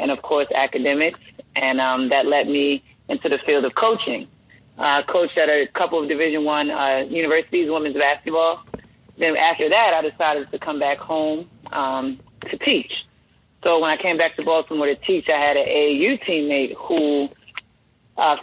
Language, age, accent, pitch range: English, 30-49, American, 145-180 Hz